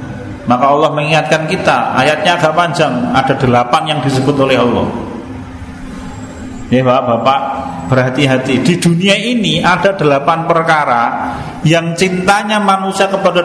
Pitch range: 130-165 Hz